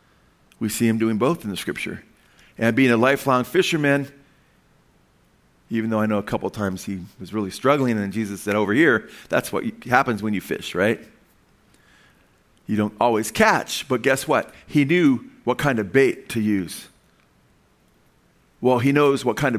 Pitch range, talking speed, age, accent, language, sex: 110-155 Hz, 175 wpm, 40-59, American, English, male